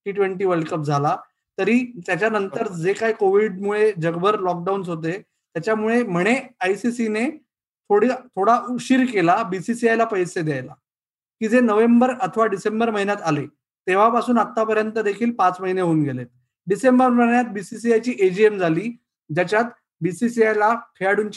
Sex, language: male, Marathi